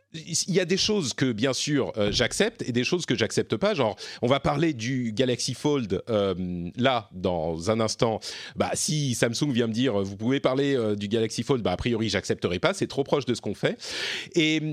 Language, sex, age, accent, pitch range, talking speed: French, male, 40-59, French, 110-150 Hz, 220 wpm